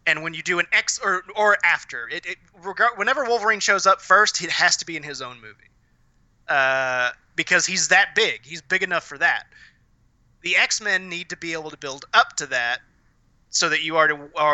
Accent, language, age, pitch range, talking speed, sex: American, English, 20-39, 140-185 Hz, 210 wpm, male